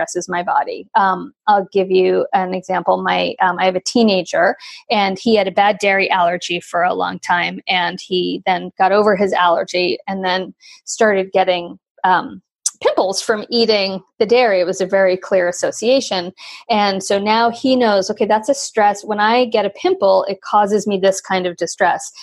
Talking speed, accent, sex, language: 190 wpm, American, female, English